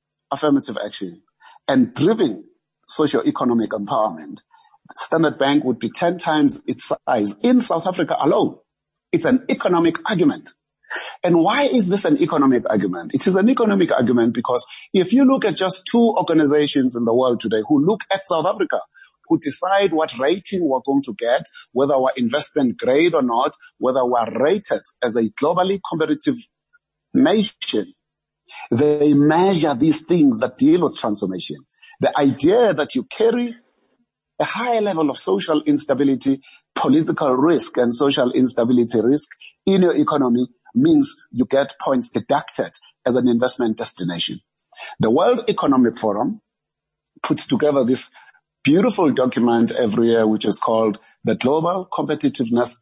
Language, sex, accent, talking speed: English, male, South African, 145 wpm